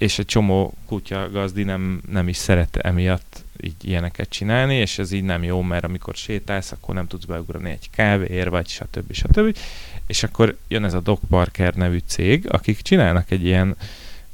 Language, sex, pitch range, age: Hungarian, male, 90-105 Hz, 30-49